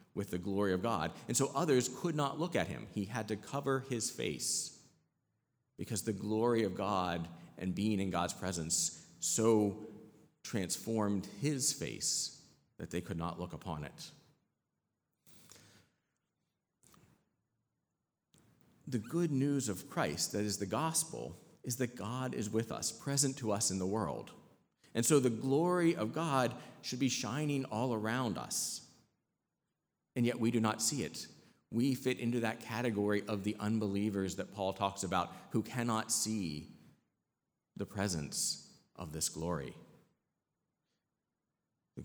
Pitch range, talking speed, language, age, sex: 95-125 Hz, 145 wpm, English, 40-59, male